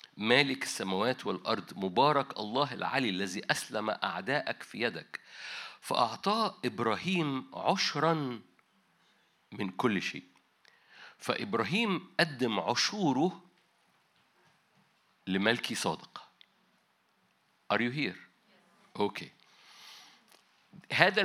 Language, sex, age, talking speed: Arabic, male, 50-69, 75 wpm